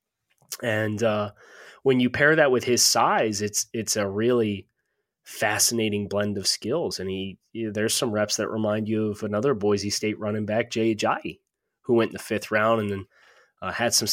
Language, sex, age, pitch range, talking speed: English, male, 20-39, 105-120 Hz, 185 wpm